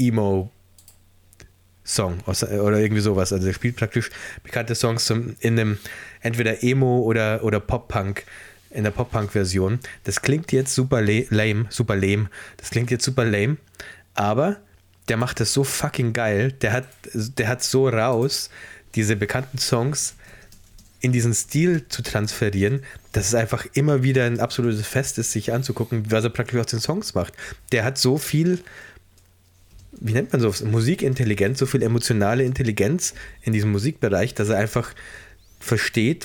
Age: 20-39